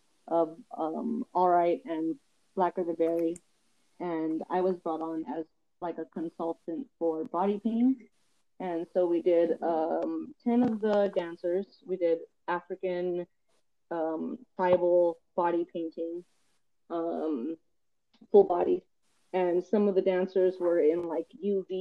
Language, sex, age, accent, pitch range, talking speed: English, female, 30-49, American, 160-190 Hz, 130 wpm